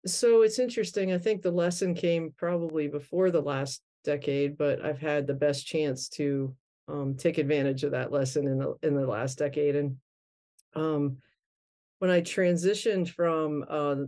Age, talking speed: 50-69, 160 wpm